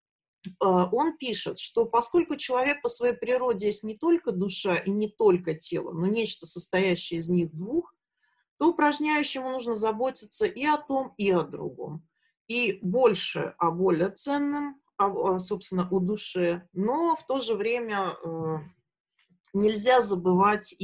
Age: 30-49